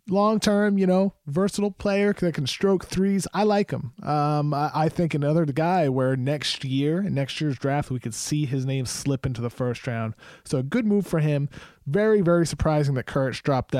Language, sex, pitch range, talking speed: English, male, 120-150 Hz, 200 wpm